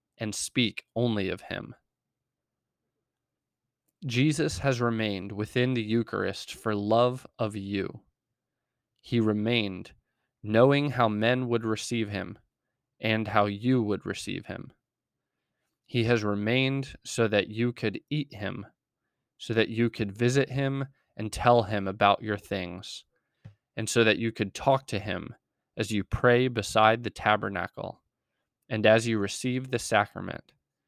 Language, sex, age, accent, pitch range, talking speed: English, male, 20-39, American, 105-120 Hz, 135 wpm